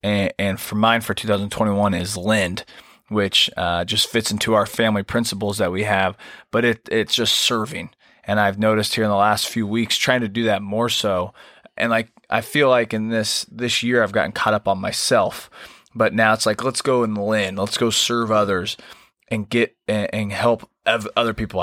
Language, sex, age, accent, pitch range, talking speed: English, male, 20-39, American, 105-120 Hz, 195 wpm